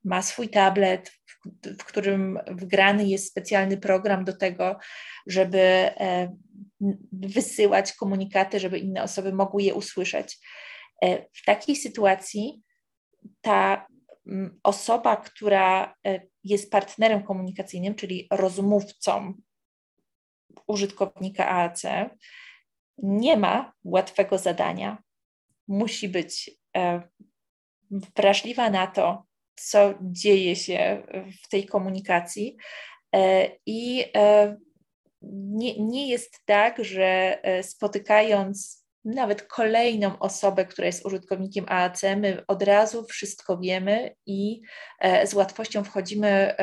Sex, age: female, 20-39